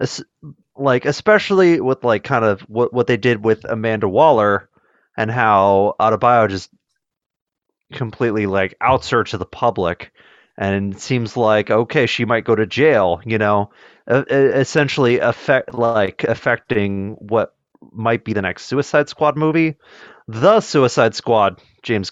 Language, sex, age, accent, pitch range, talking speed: English, male, 30-49, American, 105-135 Hz, 140 wpm